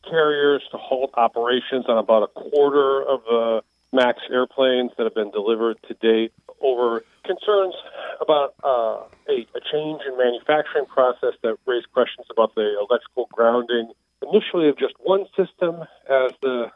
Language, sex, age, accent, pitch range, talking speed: English, male, 40-59, American, 115-185 Hz, 150 wpm